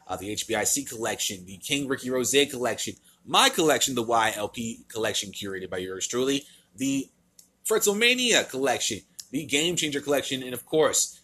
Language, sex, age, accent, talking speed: English, male, 30-49, American, 150 wpm